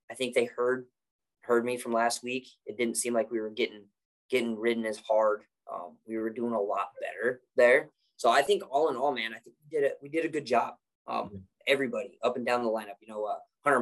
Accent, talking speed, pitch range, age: American, 245 wpm, 115-140 Hz, 20-39